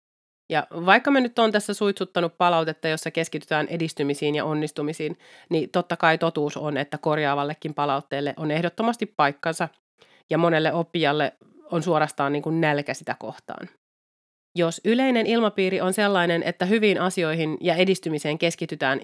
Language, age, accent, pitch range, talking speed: Finnish, 30-49, native, 150-180 Hz, 140 wpm